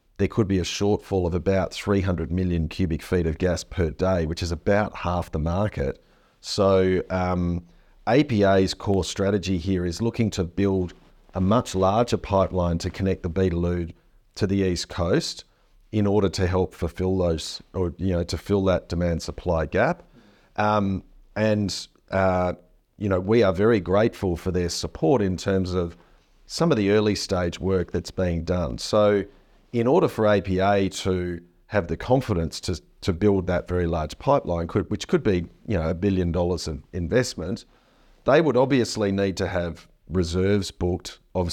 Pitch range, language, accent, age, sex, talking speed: 85-100 Hz, English, Australian, 40-59, male, 170 wpm